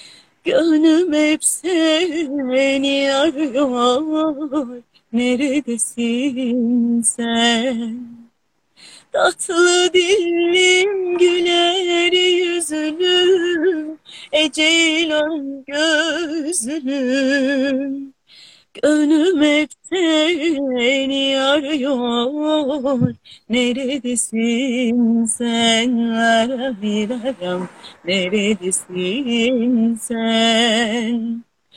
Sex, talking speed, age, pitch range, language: female, 35 wpm, 30-49, 250-395 Hz, Turkish